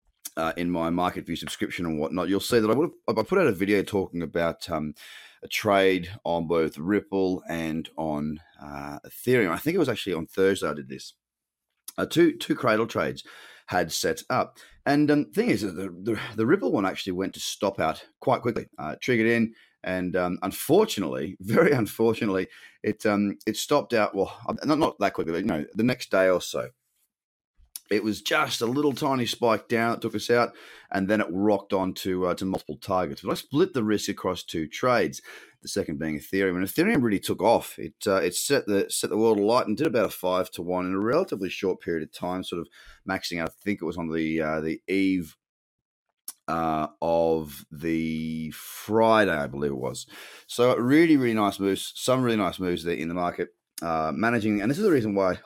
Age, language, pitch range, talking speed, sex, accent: 30-49, English, 85-110 Hz, 210 wpm, male, Australian